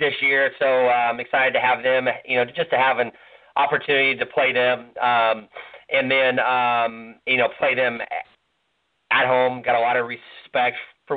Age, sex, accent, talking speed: 30-49, male, American, 190 wpm